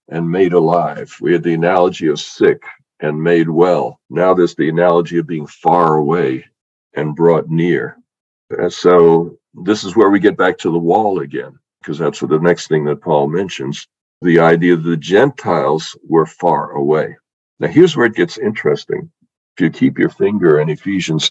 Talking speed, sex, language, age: 180 wpm, male, English, 60-79